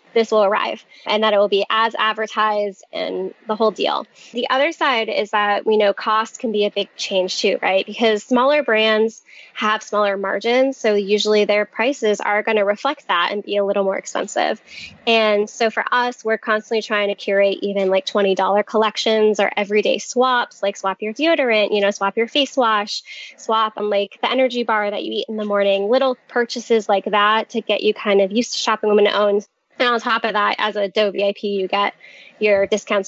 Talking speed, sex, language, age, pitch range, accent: 210 wpm, female, English, 10-29, 205-235 Hz, American